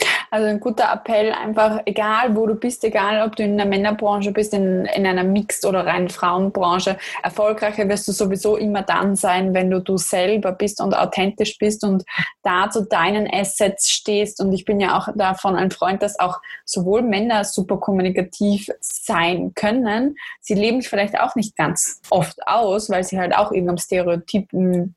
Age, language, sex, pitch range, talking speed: 20-39, German, female, 195-220 Hz, 180 wpm